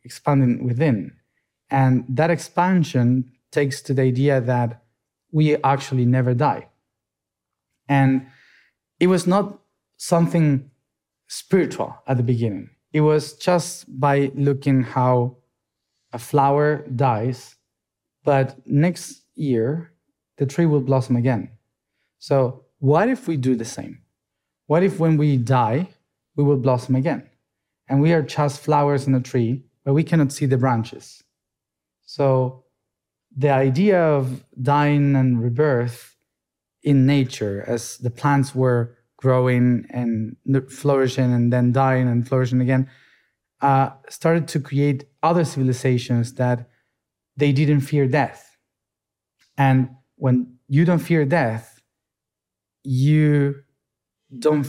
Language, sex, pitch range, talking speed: English, male, 125-145 Hz, 120 wpm